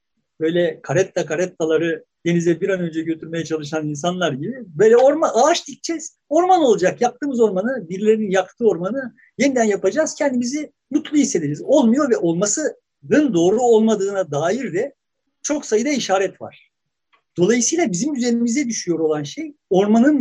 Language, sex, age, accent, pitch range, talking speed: Turkish, male, 50-69, native, 170-240 Hz, 135 wpm